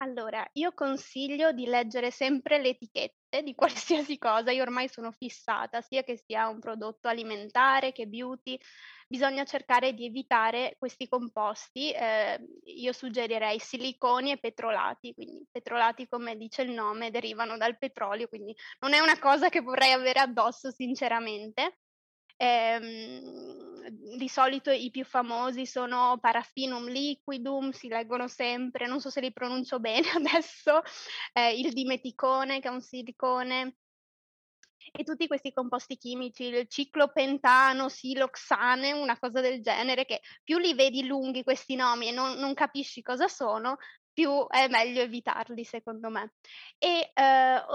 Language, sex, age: Italian, female, 20-39